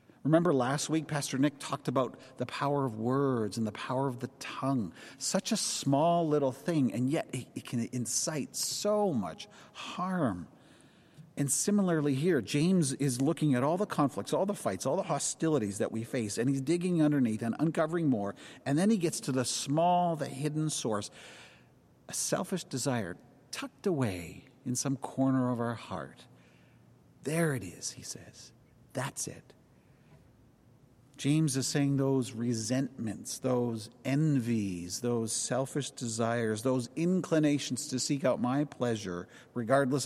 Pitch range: 120-150 Hz